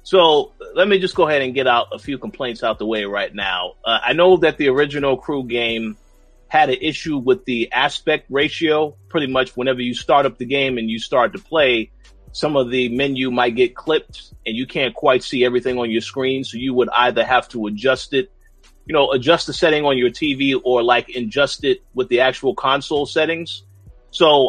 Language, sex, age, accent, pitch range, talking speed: English, male, 30-49, American, 115-150 Hz, 215 wpm